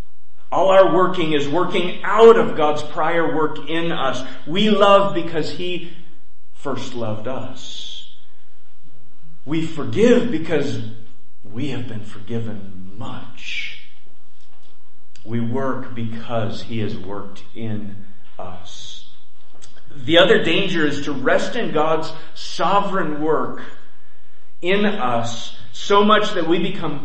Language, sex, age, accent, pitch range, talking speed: English, male, 30-49, American, 120-180 Hz, 115 wpm